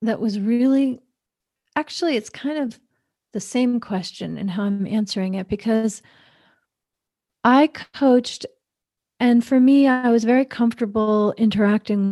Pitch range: 195-235 Hz